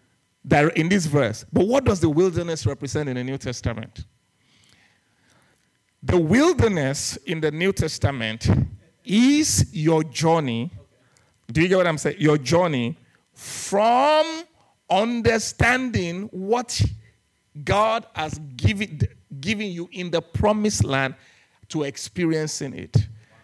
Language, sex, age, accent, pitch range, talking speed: English, male, 50-69, Nigerian, 115-165 Hz, 115 wpm